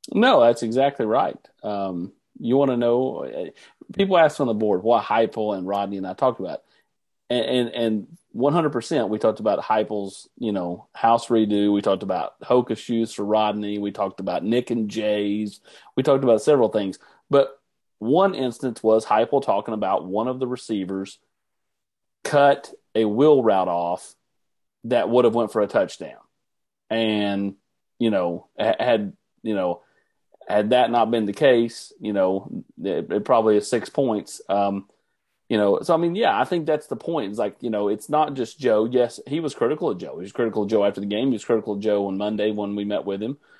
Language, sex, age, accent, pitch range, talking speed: English, male, 40-59, American, 105-120 Hz, 195 wpm